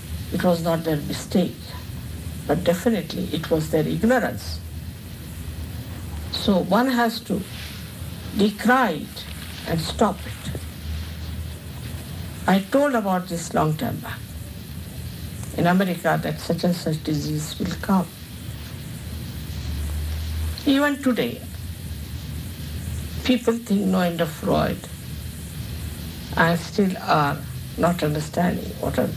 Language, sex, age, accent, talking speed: English, female, 60-79, Indian, 105 wpm